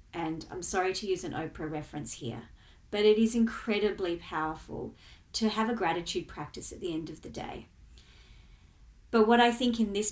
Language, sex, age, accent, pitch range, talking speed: English, female, 30-49, Australian, 185-235 Hz, 185 wpm